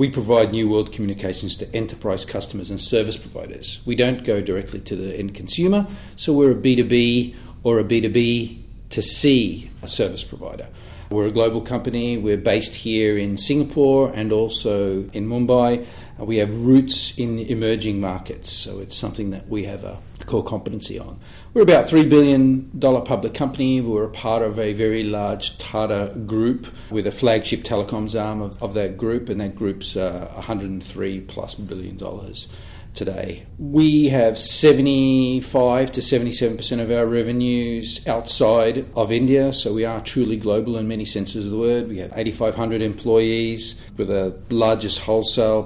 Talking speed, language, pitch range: 160 wpm, English, 100-120 Hz